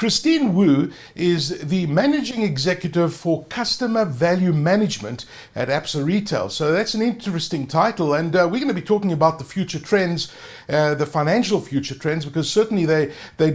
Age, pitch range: 60-79, 155-210 Hz